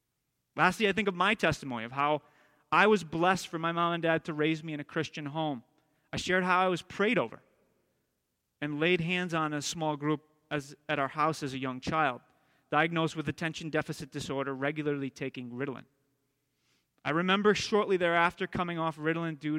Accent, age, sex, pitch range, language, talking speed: American, 30-49, male, 135-170 Hz, English, 185 wpm